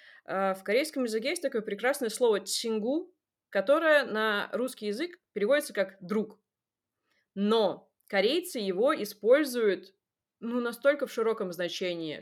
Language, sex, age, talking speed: Russian, female, 20-39, 120 wpm